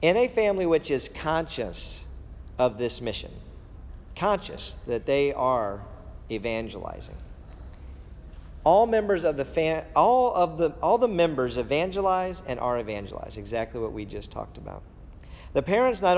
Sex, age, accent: male, 40-59, American